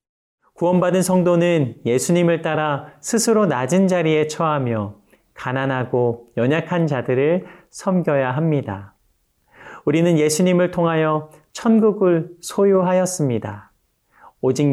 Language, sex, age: Korean, male, 40-59